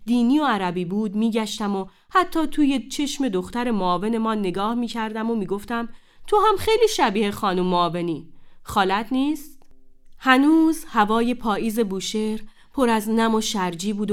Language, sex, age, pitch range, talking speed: Persian, female, 30-49, 195-265 Hz, 145 wpm